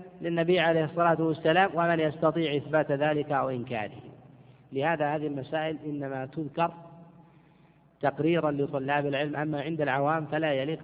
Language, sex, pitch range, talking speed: Arabic, male, 140-170 Hz, 125 wpm